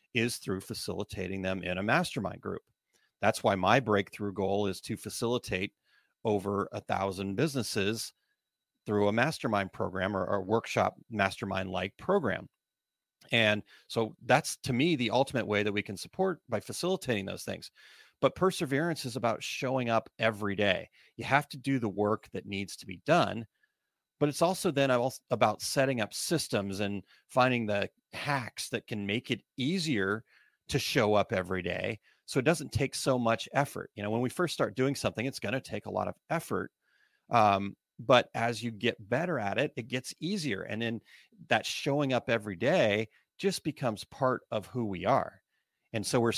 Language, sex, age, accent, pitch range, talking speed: English, male, 40-59, American, 100-135 Hz, 175 wpm